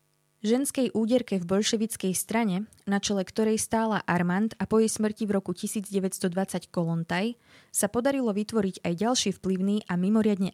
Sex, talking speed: female, 150 wpm